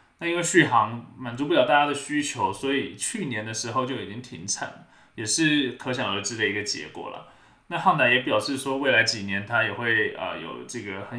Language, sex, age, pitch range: Chinese, male, 20-39, 115-145 Hz